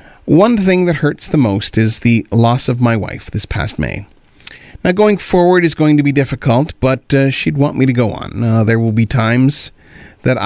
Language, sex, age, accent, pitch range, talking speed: English, male, 40-59, American, 115-150 Hz, 210 wpm